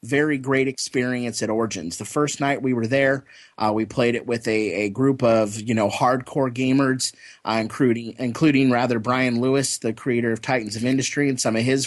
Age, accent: 30-49, American